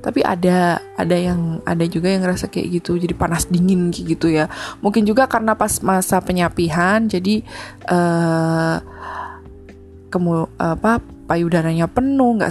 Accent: native